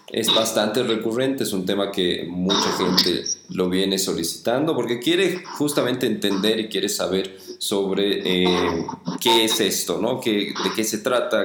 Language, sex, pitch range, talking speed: Spanish, male, 95-110 Hz, 155 wpm